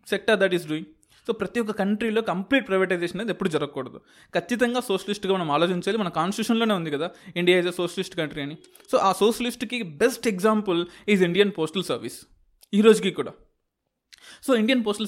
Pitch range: 160-205 Hz